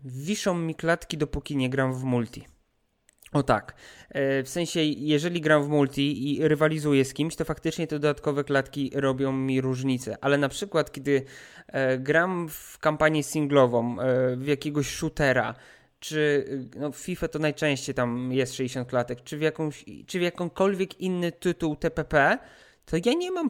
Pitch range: 140-165 Hz